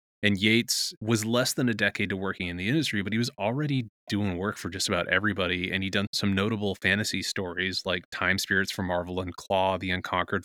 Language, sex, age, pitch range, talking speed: English, male, 20-39, 95-115 Hz, 220 wpm